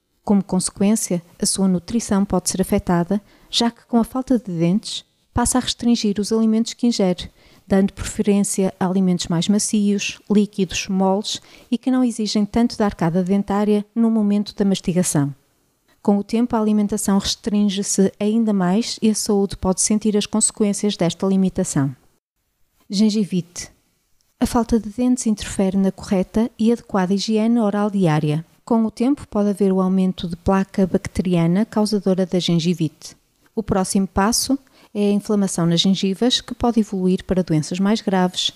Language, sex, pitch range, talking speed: Portuguese, female, 185-220 Hz, 155 wpm